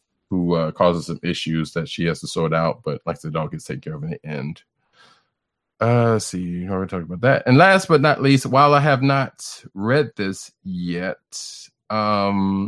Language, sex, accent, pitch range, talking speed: English, male, American, 90-130 Hz, 210 wpm